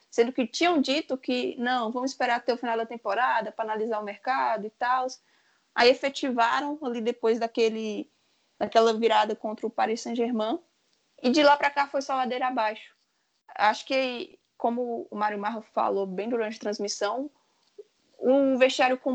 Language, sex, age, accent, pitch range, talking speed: Portuguese, female, 20-39, Brazilian, 225-280 Hz, 170 wpm